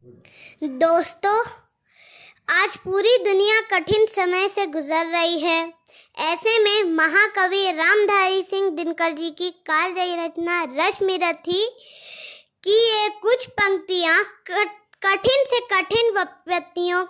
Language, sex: Hindi, male